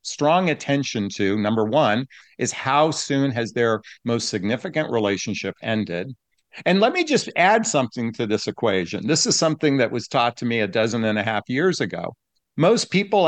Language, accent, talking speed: English, American, 180 wpm